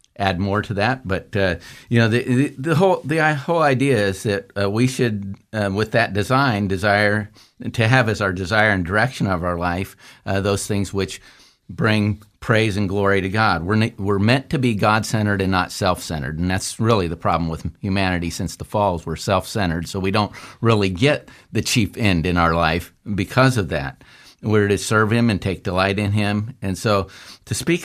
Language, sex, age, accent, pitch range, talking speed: English, male, 50-69, American, 95-110 Hz, 205 wpm